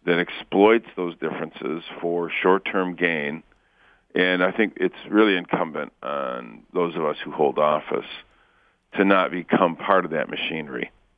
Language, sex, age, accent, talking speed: English, male, 50-69, American, 145 wpm